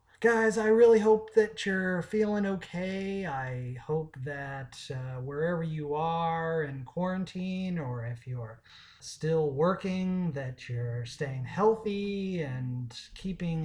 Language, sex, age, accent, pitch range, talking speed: English, male, 30-49, American, 145-195 Hz, 125 wpm